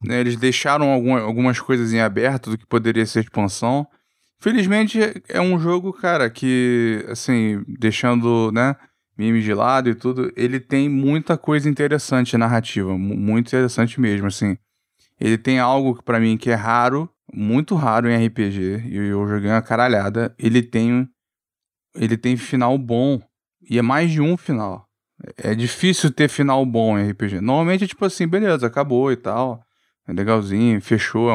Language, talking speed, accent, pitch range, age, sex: Portuguese, 160 wpm, Brazilian, 115-140 Hz, 20-39, male